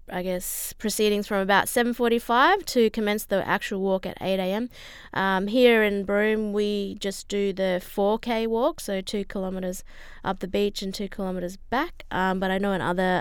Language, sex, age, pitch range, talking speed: English, female, 20-39, 185-225 Hz, 185 wpm